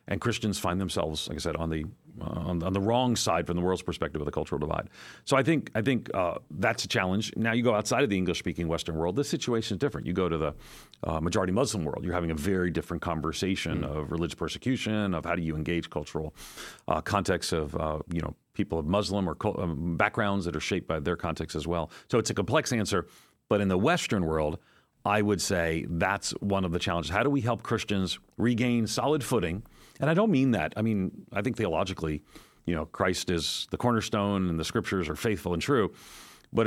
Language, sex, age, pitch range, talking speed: English, male, 40-59, 85-110 Hz, 225 wpm